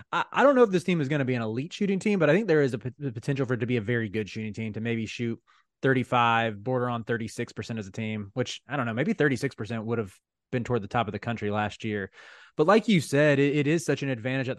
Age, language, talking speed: 20-39, English, 280 wpm